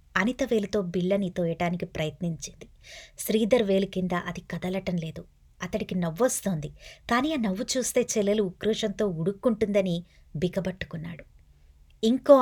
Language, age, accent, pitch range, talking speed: Telugu, 20-39, native, 175-230 Hz, 100 wpm